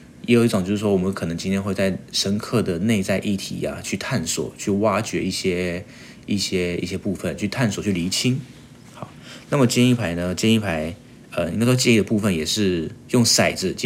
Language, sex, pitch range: Chinese, male, 90-115 Hz